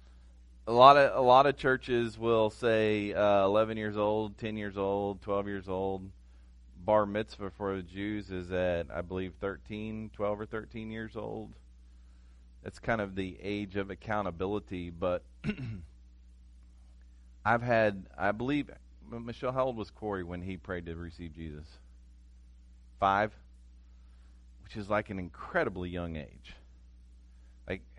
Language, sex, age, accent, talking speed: English, male, 40-59, American, 140 wpm